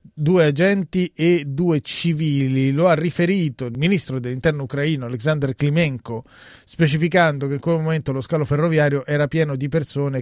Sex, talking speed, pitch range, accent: male, 155 wpm, 125-155 Hz, native